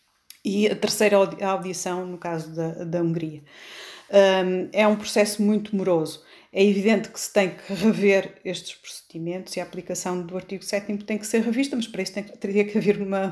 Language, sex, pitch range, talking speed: Portuguese, female, 165-210 Hz, 185 wpm